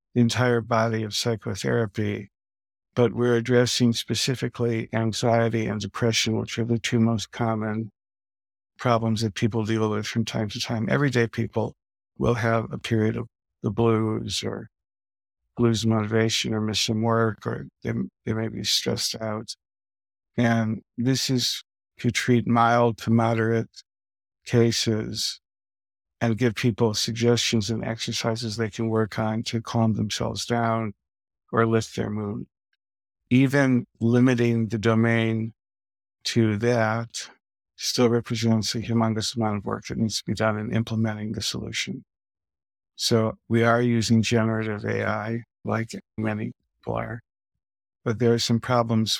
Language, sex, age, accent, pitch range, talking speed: English, male, 50-69, American, 110-115 Hz, 135 wpm